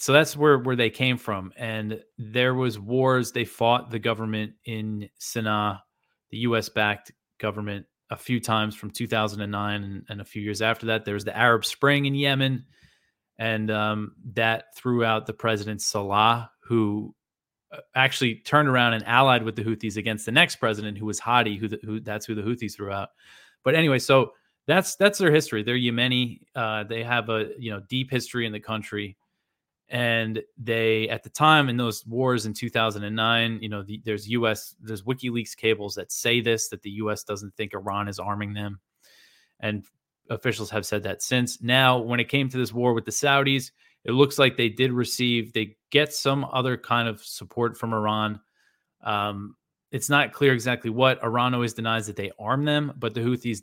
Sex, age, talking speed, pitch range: male, 20-39, 190 wpm, 105-125 Hz